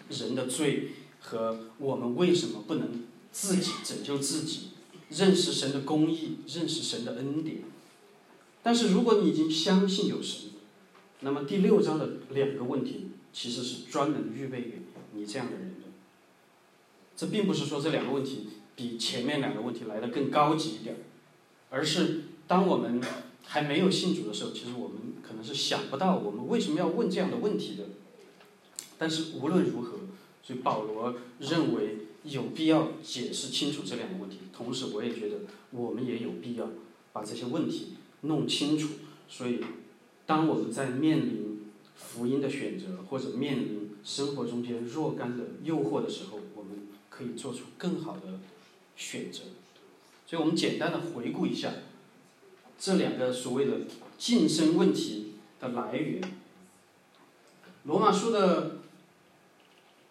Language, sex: English, male